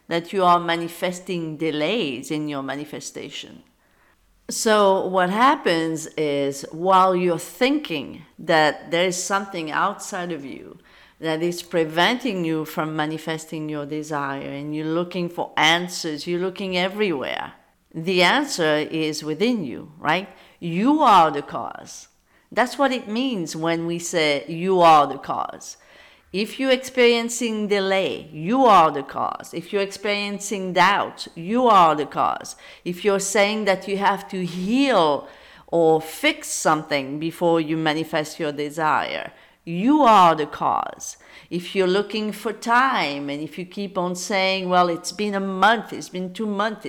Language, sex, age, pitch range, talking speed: English, female, 50-69, 160-210 Hz, 145 wpm